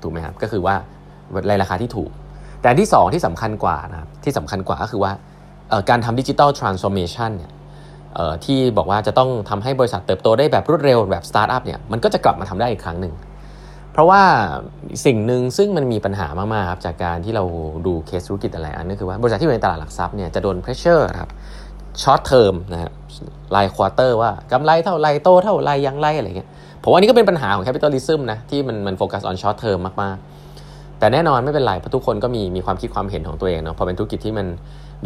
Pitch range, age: 90-120 Hz, 20-39